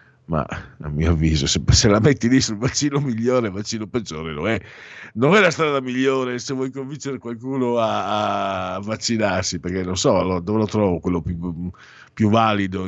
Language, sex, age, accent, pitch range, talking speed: Italian, male, 50-69, native, 90-120 Hz, 185 wpm